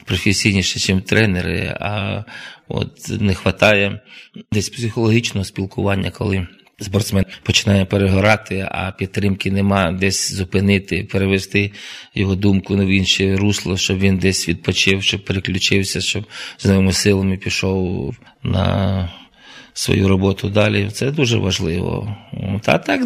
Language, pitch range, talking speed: Ukrainian, 95-110 Hz, 115 wpm